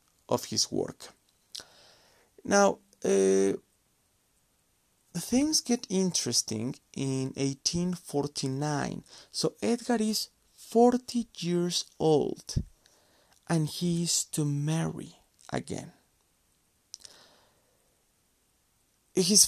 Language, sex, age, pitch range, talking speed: English, male, 30-49, 125-180 Hz, 70 wpm